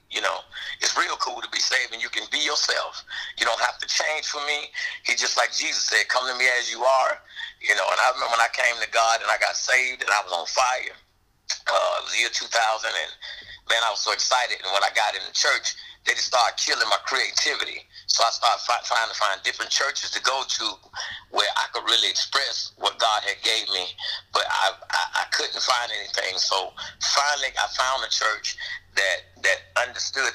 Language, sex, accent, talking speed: English, male, American, 220 wpm